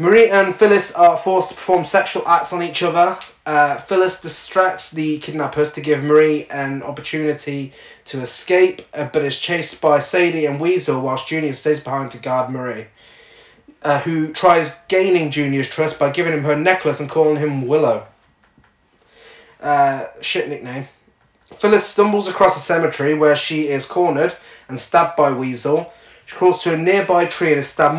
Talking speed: 170 wpm